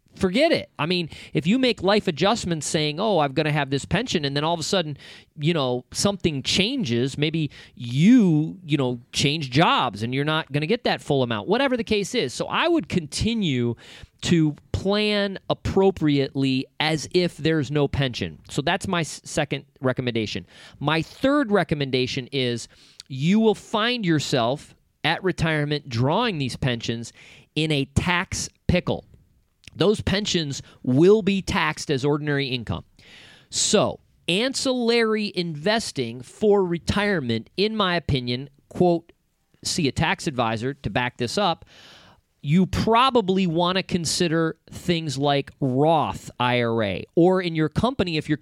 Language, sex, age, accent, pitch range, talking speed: English, male, 40-59, American, 135-185 Hz, 150 wpm